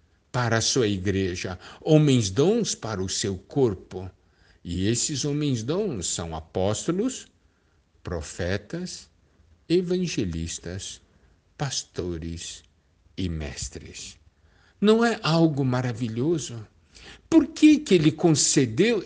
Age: 60-79